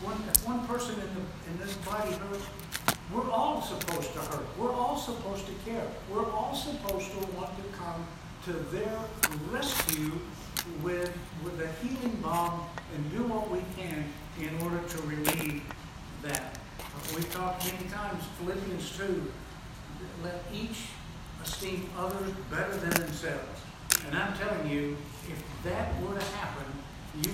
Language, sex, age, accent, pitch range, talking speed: English, male, 60-79, American, 160-210 Hz, 145 wpm